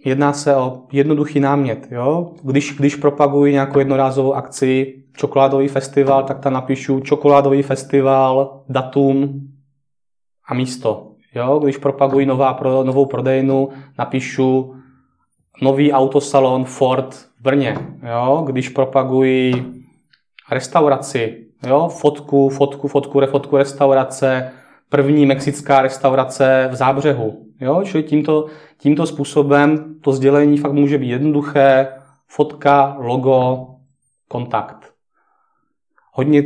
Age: 20-39